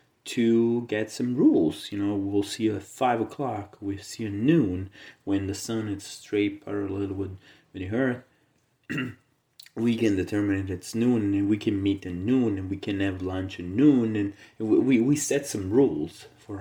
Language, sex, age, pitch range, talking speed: English, male, 30-49, 100-120 Hz, 195 wpm